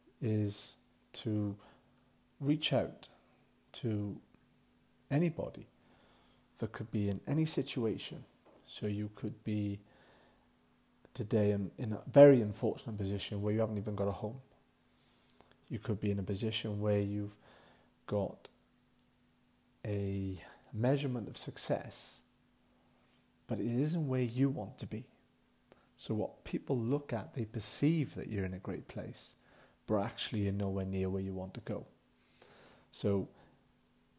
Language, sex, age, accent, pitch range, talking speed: English, male, 40-59, British, 100-130 Hz, 130 wpm